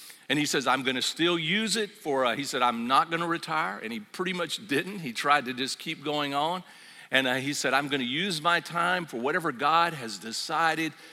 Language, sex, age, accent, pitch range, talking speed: English, male, 50-69, American, 130-200 Hz, 230 wpm